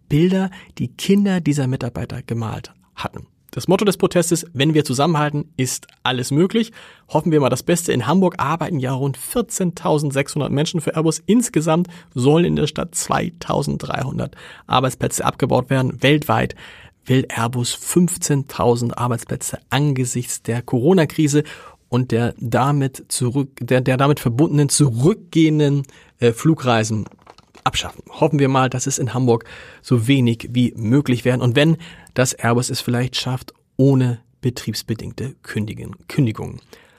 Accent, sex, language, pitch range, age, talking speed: German, male, German, 125-160 Hz, 40-59, 130 wpm